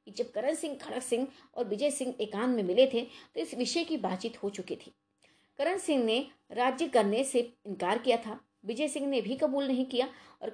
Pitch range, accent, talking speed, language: 190-255 Hz, native, 210 wpm, Hindi